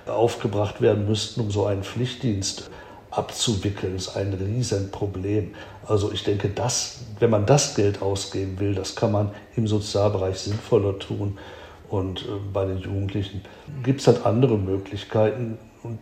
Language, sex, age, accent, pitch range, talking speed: German, male, 60-79, German, 100-120 Hz, 150 wpm